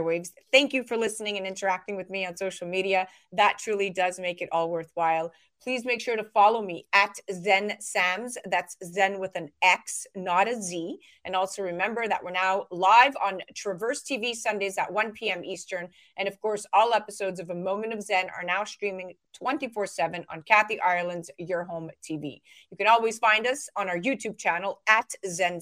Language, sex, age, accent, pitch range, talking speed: English, female, 30-49, American, 185-220 Hz, 195 wpm